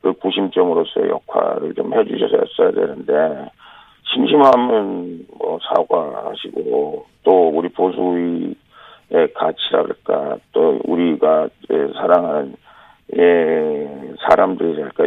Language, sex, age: Korean, male, 40-59